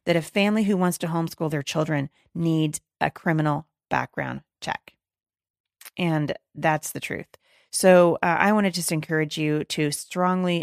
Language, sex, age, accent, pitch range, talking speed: English, female, 30-49, American, 155-190 Hz, 150 wpm